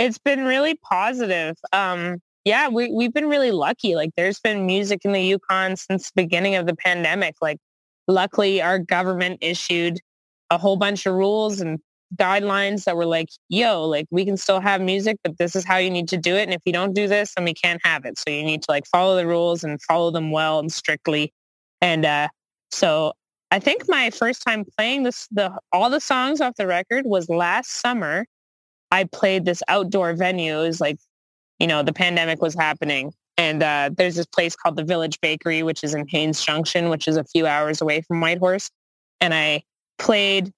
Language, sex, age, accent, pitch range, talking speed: English, female, 20-39, American, 165-205 Hz, 205 wpm